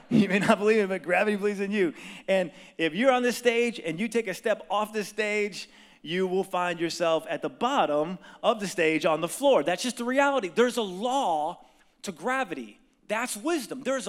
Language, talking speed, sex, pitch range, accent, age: English, 210 wpm, male, 190-265 Hz, American, 30-49